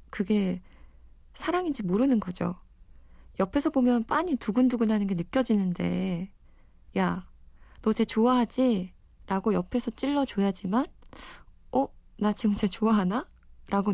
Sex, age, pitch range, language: female, 20-39, 170-220 Hz, Korean